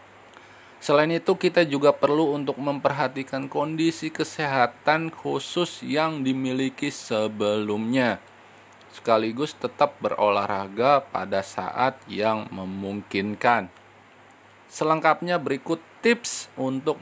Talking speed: 85 wpm